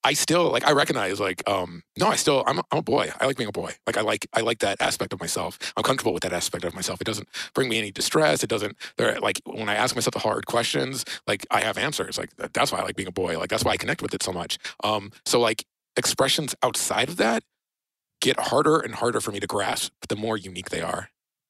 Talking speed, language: 260 wpm, English